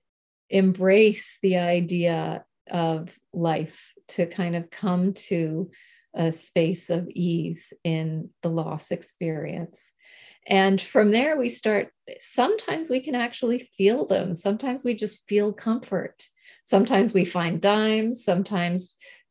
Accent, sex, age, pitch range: American, female, 40-59, 170-205 Hz